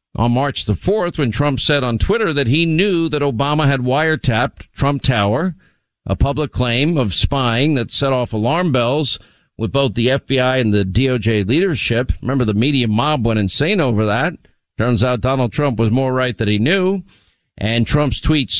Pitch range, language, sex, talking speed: 115-145 Hz, English, male, 185 wpm